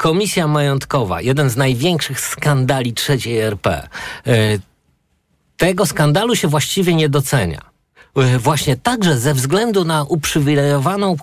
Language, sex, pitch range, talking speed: Polish, male, 120-150 Hz, 105 wpm